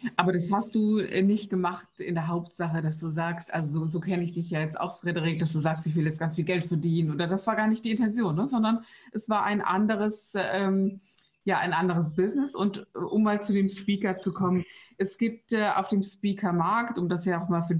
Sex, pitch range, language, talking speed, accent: female, 170-200 Hz, German, 245 wpm, German